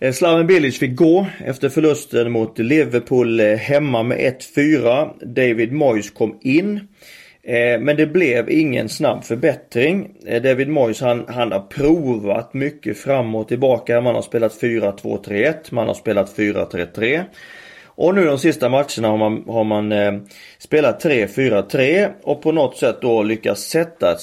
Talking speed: 145 wpm